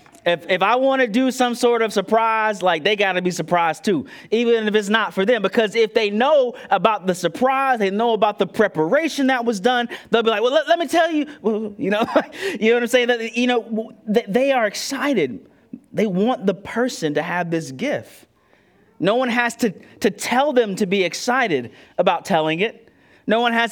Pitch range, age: 210-275 Hz, 30-49